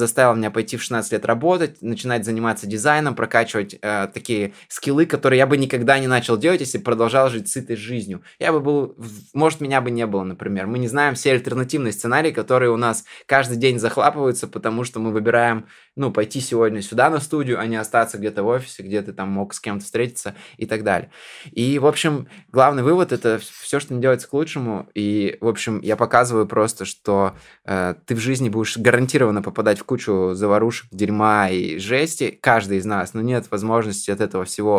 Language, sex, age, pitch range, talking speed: Russian, male, 20-39, 100-125 Hz, 200 wpm